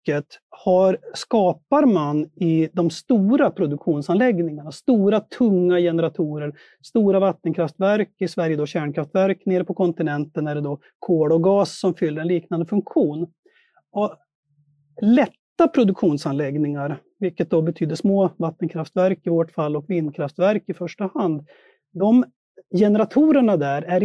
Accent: native